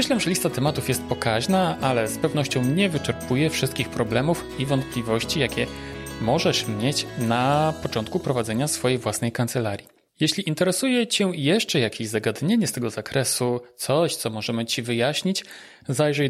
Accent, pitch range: native, 115-145 Hz